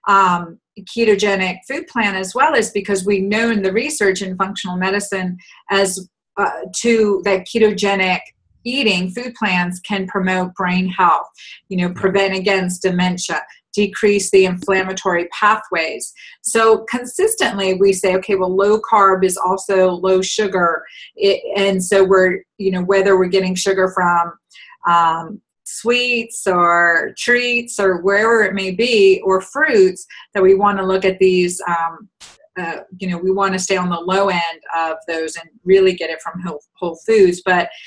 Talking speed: 160 wpm